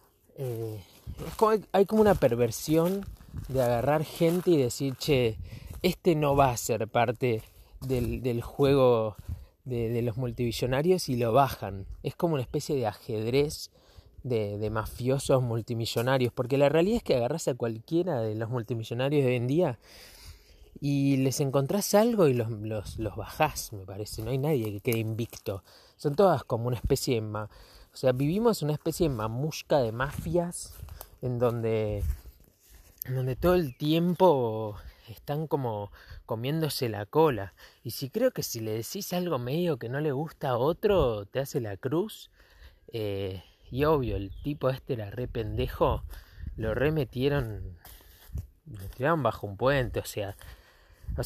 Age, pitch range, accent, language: 20-39, 110-145 Hz, Argentinian, Spanish